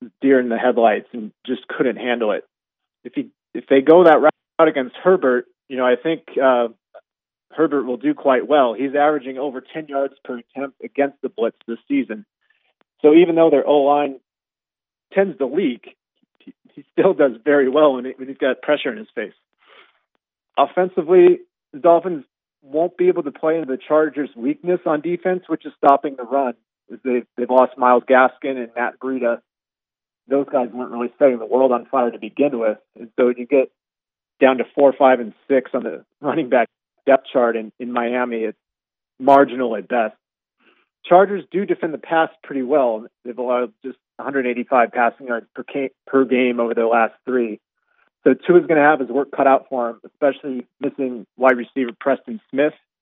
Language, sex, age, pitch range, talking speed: English, male, 40-59, 125-160 Hz, 185 wpm